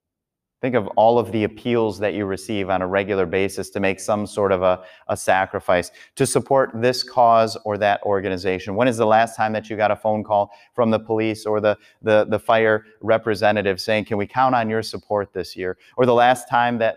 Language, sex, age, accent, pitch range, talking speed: English, male, 30-49, American, 105-120 Hz, 220 wpm